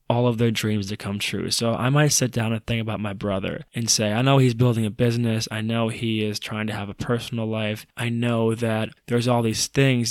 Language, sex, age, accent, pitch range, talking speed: English, male, 20-39, American, 105-120 Hz, 250 wpm